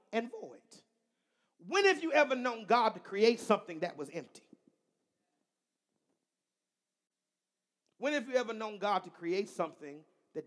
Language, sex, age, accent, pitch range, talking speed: English, male, 40-59, American, 180-265 Hz, 140 wpm